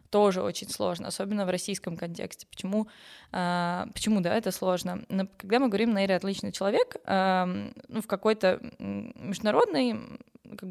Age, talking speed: 20-39, 150 wpm